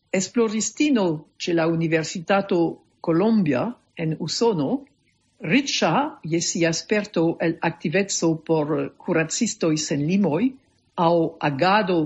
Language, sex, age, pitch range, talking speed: English, female, 50-69, 160-210 Hz, 90 wpm